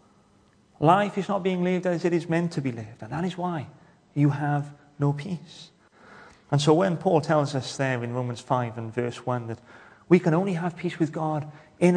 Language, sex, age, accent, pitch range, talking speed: English, male, 30-49, British, 145-195 Hz, 210 wpm